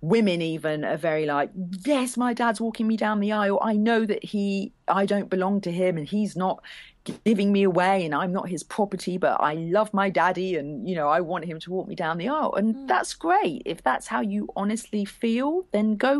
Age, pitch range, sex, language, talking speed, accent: 40-59, 165-215 Hz, female, English, 225 wpm, British